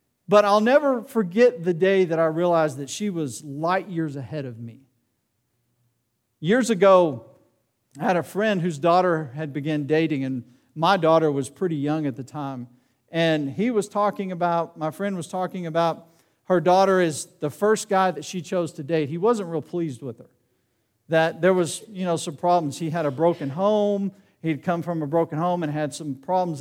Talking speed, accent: 195 wpm, American